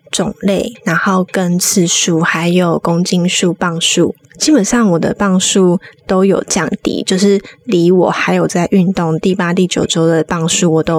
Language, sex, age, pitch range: Chinese, female, 20-39, 180-235 Hz